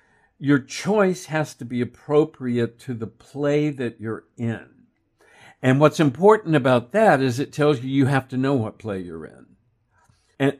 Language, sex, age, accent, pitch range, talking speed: English, male, 60-79, American, 115-145 Hz, 170 wpm